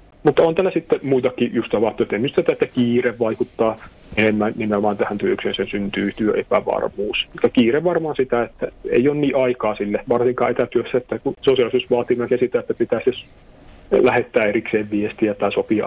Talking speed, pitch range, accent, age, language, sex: 145 wpm, 110-160 Hz, native, 30-49, Finnish, male